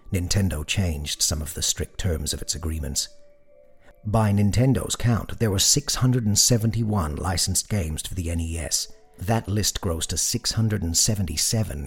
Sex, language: male, English